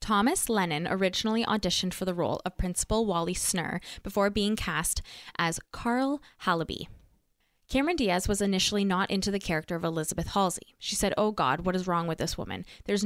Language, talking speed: English, 180 wpm